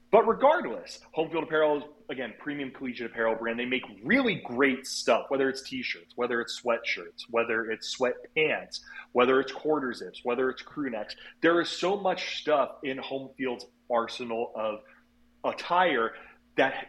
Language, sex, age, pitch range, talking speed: English, male, 30-49, 115-140 Hz, 150 wpm